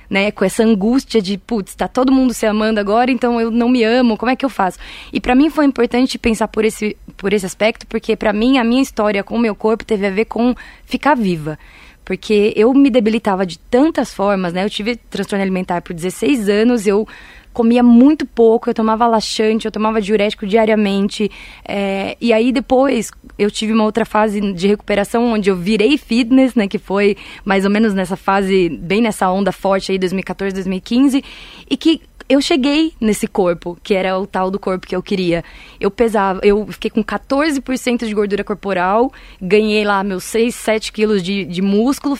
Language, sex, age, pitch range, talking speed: Portuguese, female, 20-39, 205-245 Hz, 195 wpm